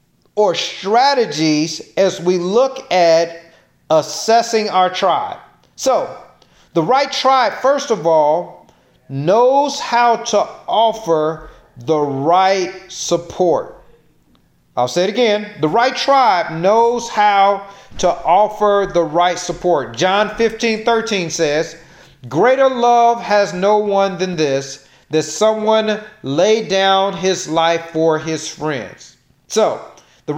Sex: male